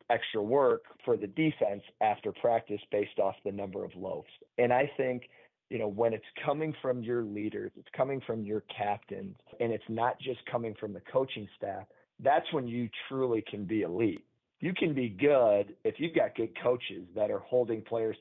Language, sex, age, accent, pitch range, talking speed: English, male, 40-59, American, 105-125 Hz, 190 wpm